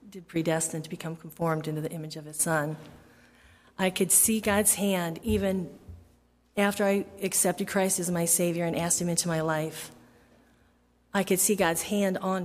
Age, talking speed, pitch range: 40-59, 170 wpm, 160-190 Hz